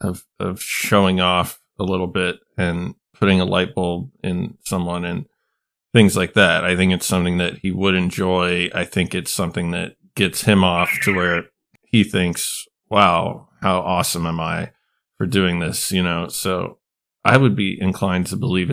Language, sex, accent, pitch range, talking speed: English, male, American, 90-120 Hz, 175 wpm